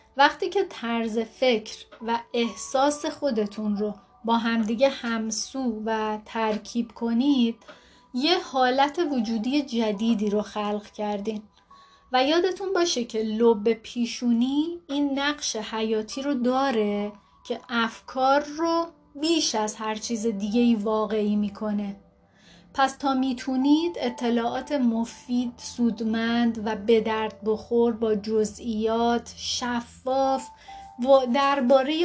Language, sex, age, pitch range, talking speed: Persian, female, 30-49, 220-270 Hz, 105 wpm